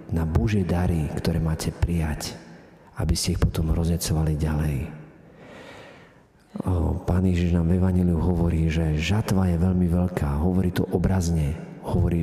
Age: 50-69